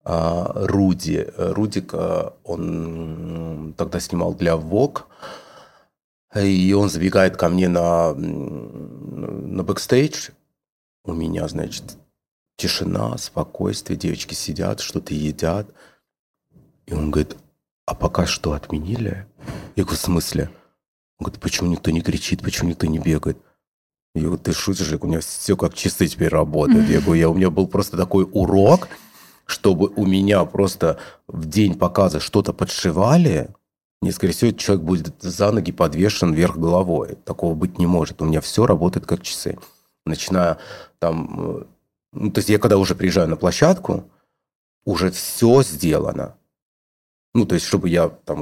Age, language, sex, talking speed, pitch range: 30-49, Russian, male, 140 wpm, 80-100 Hz